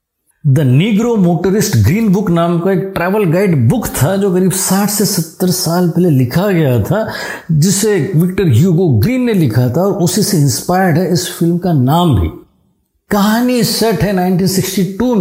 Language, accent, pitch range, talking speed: Hindi, native, 150-195 Hz, 165 wpm